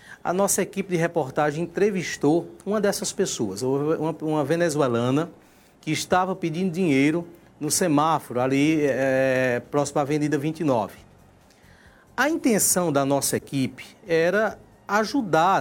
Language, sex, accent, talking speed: Portuguese, male, Brazilian, 115 wpm